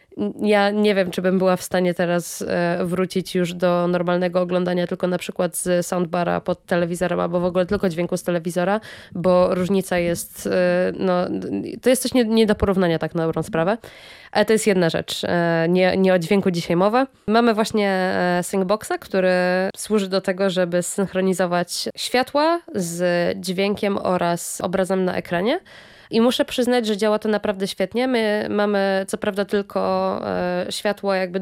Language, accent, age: Polish, native, 20-39